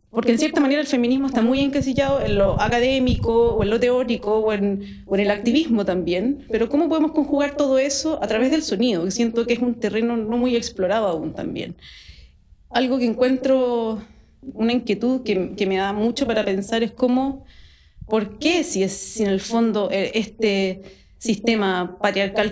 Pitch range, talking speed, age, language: 195-250 Hz, 185 wpm, 30-49, Spanish